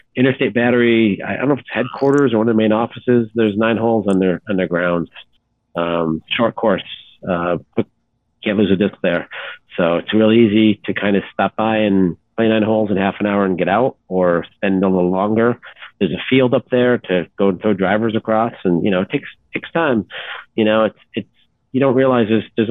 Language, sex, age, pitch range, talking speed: English, male, 40-59, 95-115 Hz, 215 wpm